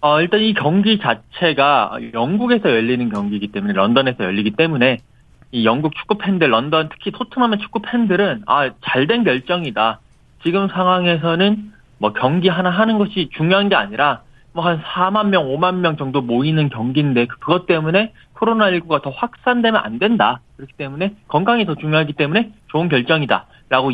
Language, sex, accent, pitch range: Korean, male, native, 140-210 Hz